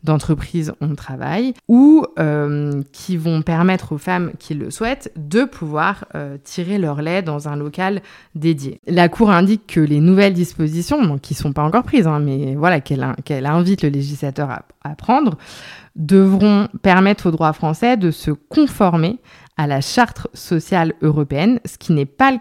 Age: 20-39